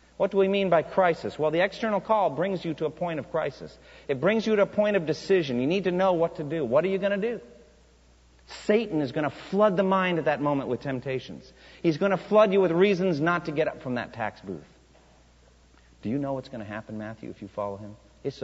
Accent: American